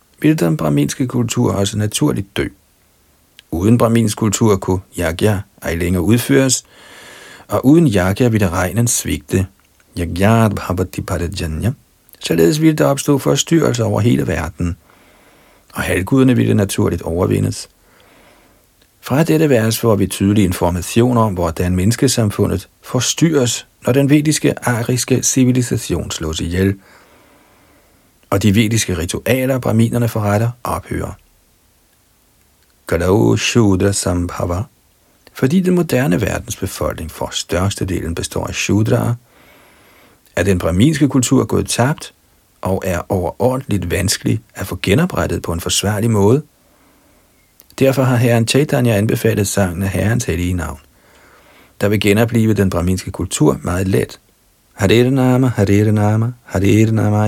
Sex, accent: male, native